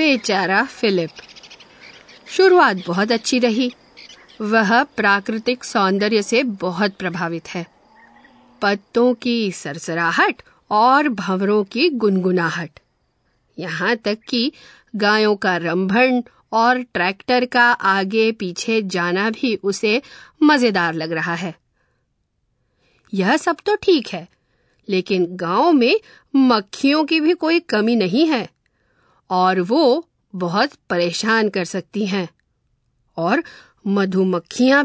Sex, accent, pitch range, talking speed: female, native, 190-275 Hz, 105 wpm